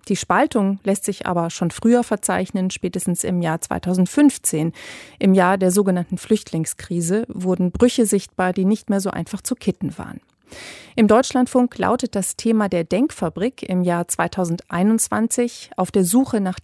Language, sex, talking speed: German, female, 150 wpm